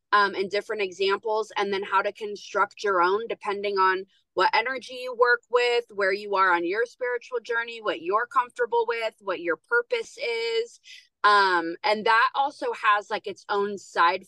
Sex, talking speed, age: female, 175 wpm, 20-39